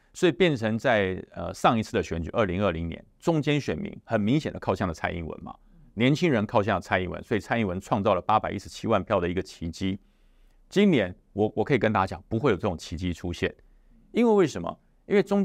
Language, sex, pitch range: Chinese, male, 95-135 Hz